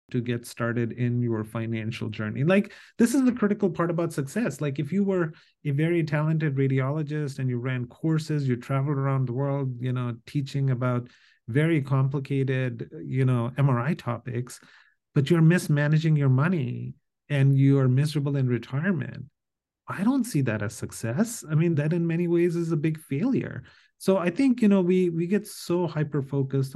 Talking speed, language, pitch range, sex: 175 wpm, English, 115-150 Hz, male